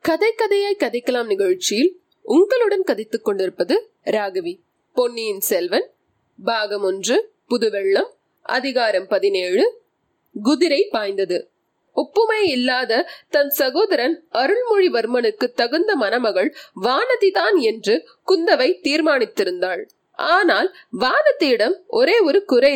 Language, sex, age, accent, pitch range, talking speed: Tamil, female, 30-49, native, 250-415 Hz, 85 wpm